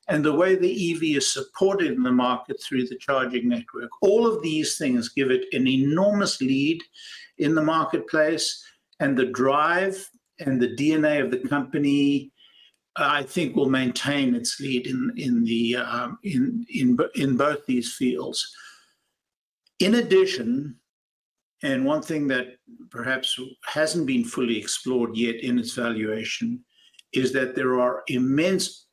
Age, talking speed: 60-79, 135 wpm